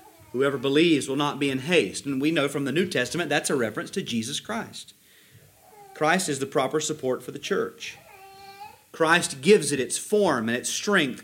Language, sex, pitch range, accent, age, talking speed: English, male, 155-220 Hz, American, 40-59, 190 wpm